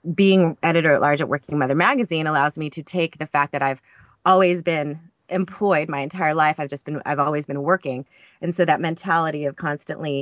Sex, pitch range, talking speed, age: female, 145-180 Hz, 200 wpm, 30-49